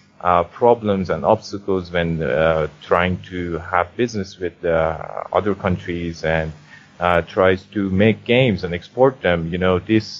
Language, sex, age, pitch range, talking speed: English, male, 30-49, 85-105 Hz, 155 wpm